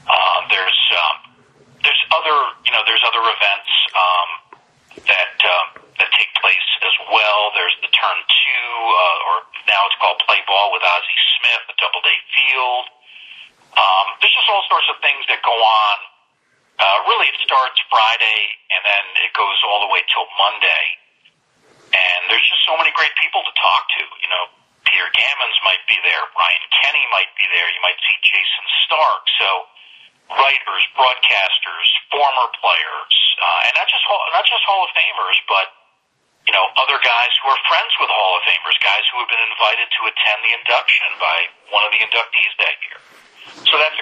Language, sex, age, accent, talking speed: English, male, 40-59, American, 180 wpm